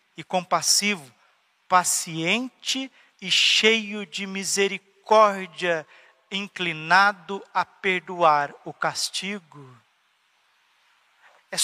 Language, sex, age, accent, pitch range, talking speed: Portuguese, male, 50-69, Brazilian, 165-205 Hz, 65 wpm